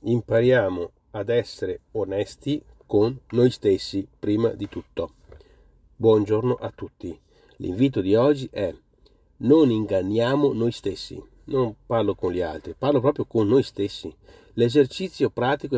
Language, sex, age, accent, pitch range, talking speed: Italian, male, 40-59, native, 105-140 Hz, 125 wpm